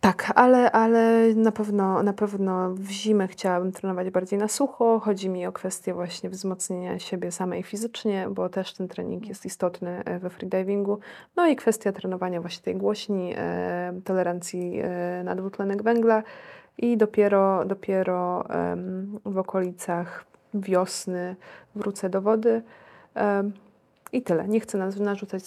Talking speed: 130 wpm